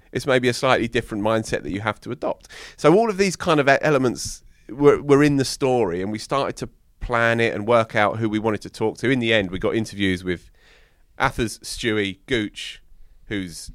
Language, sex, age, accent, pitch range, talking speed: English, male, 30-49, British, 90-115 Hz, 215 wpm